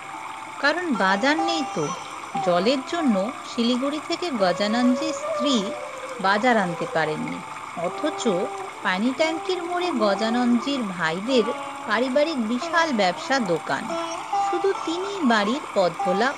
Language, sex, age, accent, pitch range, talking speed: Bengali, female, 50-69, native, 200-295 Hz, 55 wpm